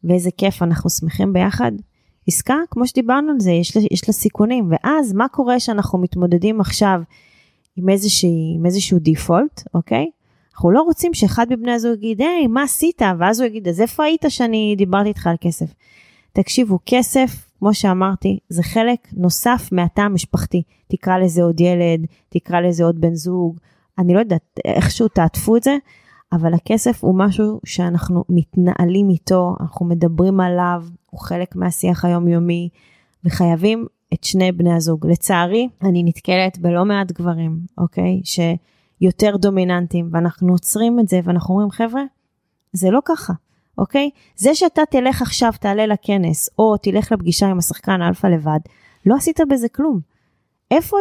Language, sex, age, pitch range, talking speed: Hebrew, female, 20-39, 175-225 Hz, 155 wpm